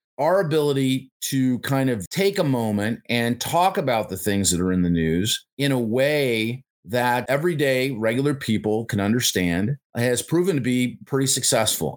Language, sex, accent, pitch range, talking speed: English, male, American, 110-150 Hz, 165 wpm